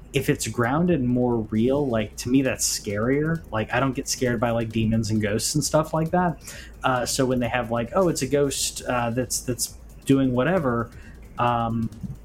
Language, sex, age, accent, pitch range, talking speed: English, male, 20-39, American, 110-130 Hz, 200 wpm